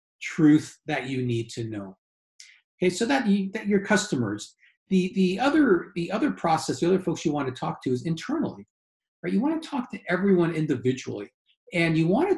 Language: English